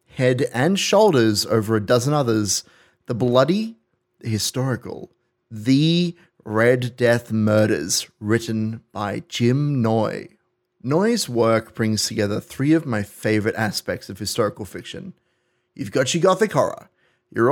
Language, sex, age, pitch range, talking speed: English, male, 30-49, 110-145 Hz, 125 wpm